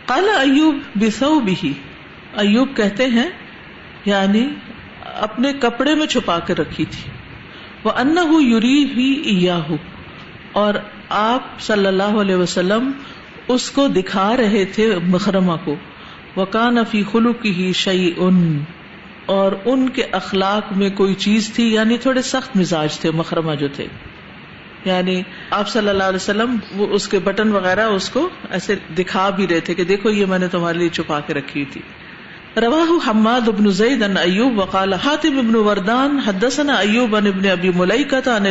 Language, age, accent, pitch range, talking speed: English, 50-69, Indian, 180-230 Hz, 140 wpm